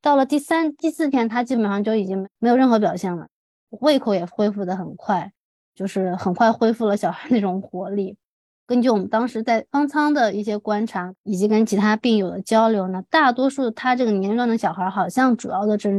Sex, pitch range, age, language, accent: female, 195-245 Hz, 20-39, Chinese, native